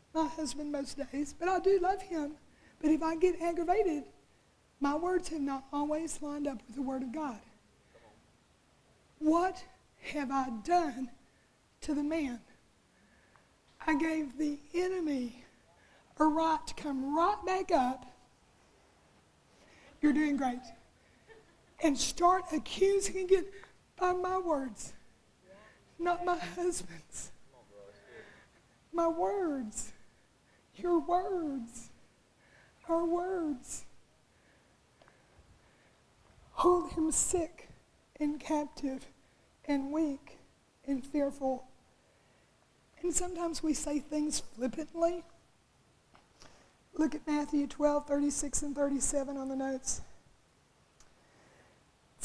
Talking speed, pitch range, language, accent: 100 wpm, 275-340 Hz, English, American